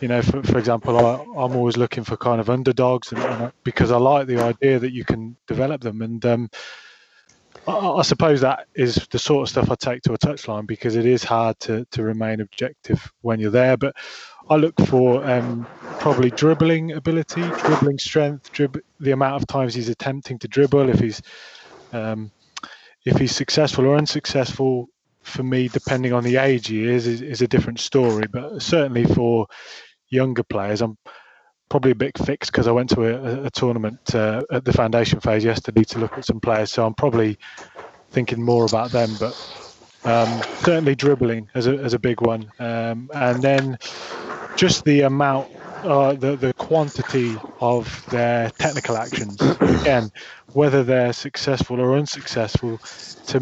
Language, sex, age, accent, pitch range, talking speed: English, male, 20-39, British, 115-140 Hz, 180 wpm